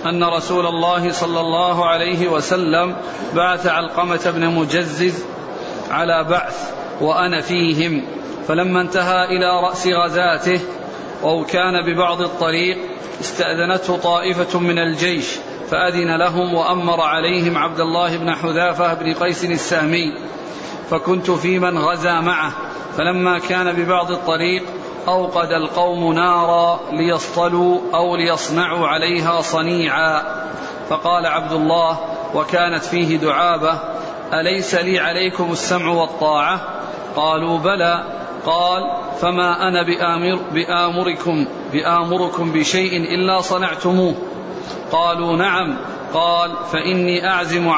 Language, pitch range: Arabic, 165-180 Hz